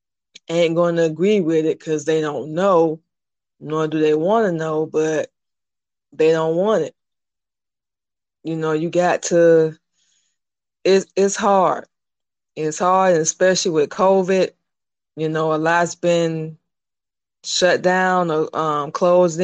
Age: 20-39